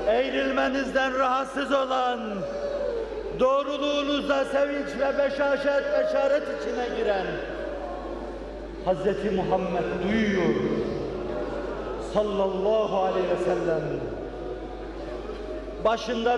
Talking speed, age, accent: 60 wpm, 50-69, native